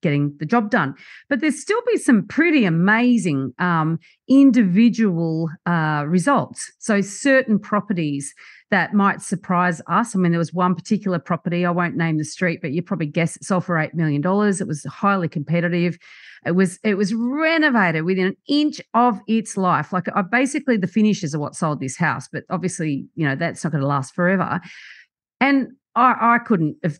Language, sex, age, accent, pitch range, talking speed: English, female, 40-59, Australian, 165-210 Hz, 185 wpm